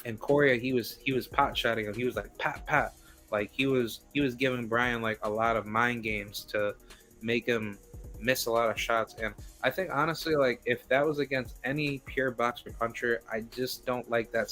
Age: 20-39